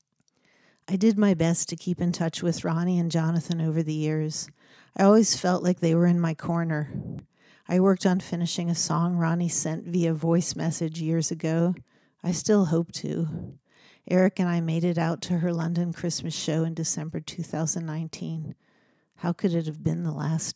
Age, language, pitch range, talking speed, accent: 50-69, English, 160-180 Hz, 180 wpm, American